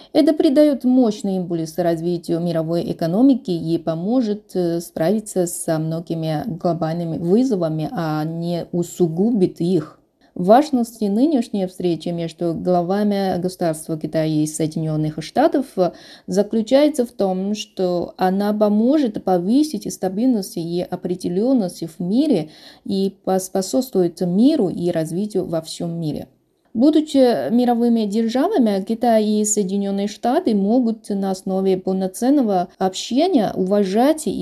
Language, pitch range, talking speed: Russian, 175-230 Hz, 105 wpm